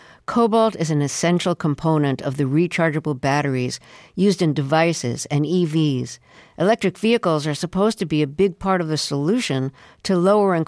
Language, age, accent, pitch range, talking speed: English, 50-69, American, 145-190 Hz, 155 wpm